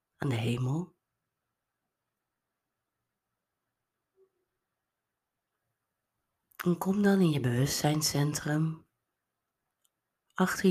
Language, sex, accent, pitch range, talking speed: Dutch, female, Dutch, 125-155 Hz, 55 wpm